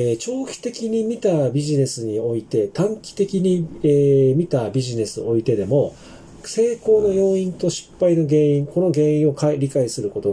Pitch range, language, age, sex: 120-180 Hz, Japanese, 40-59, male